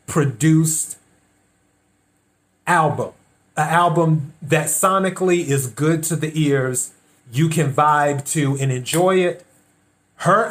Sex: male